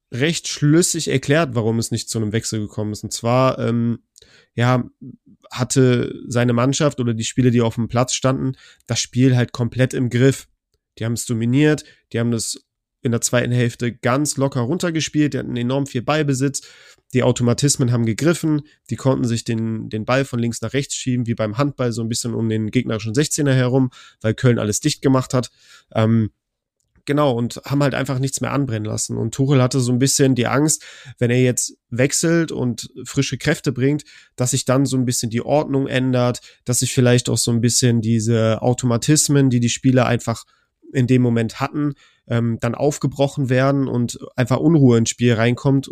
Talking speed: 190 wpm